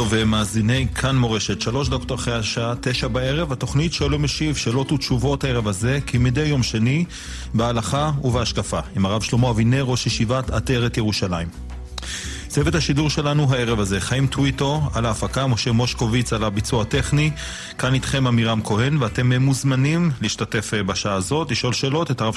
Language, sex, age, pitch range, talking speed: Hebrew, male, 30-49, 105-135 Hz, 155 wpm